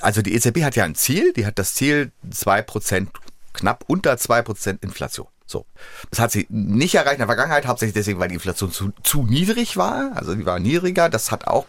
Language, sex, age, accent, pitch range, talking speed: German, male, 30-49, German, 105-150 Hz, 210 wpm